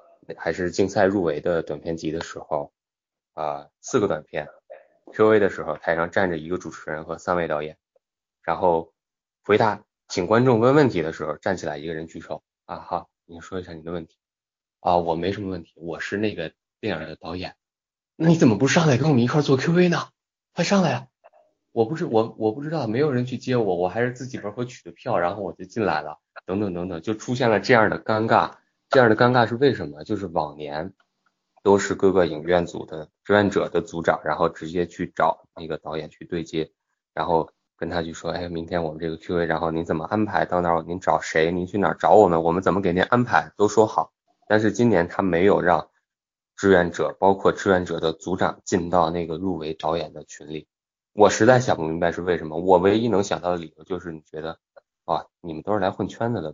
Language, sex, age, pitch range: Chinese, male, 20-39, 80-105 Hz